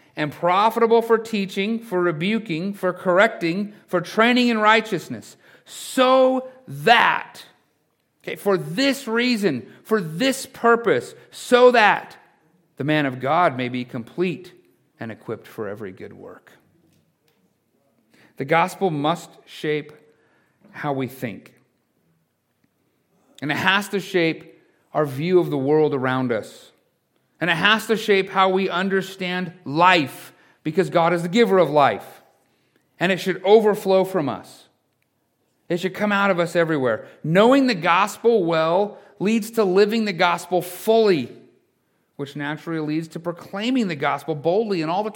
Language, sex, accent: English, male, American